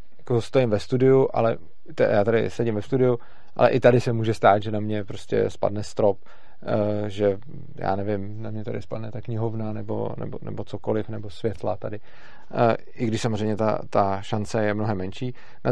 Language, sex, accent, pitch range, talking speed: Czech, male, native, 105-120 Hz, 180 wpm